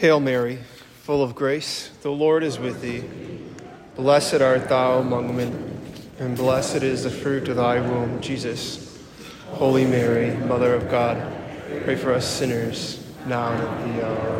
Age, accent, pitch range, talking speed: 30-49, American, 130-160 Hz, 160 wpm